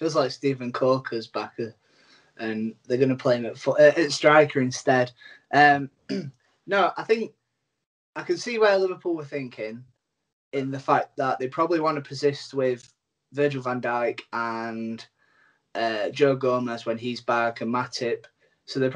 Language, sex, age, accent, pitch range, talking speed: English, male, 20-39, British, 120-140 Hz, 160 wpm